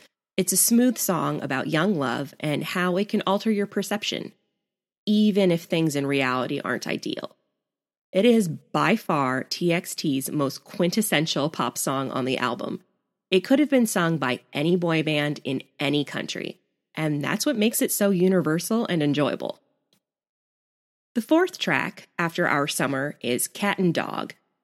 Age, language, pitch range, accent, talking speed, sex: 20-39, English, 145-195 Hz, American, 155 wpm, female